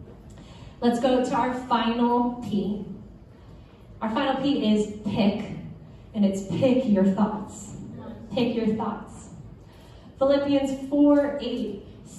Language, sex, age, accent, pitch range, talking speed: English, female, 10-29, American, 205-255 Hz, 105 wpm